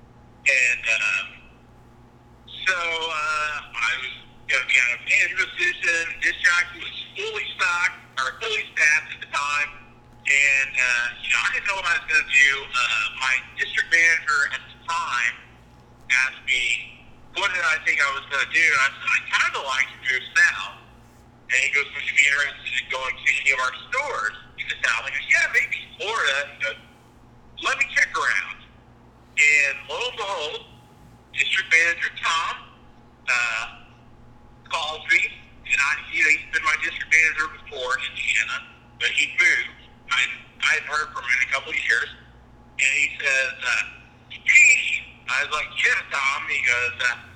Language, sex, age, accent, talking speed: English, male, 50-69, American, 175 wpm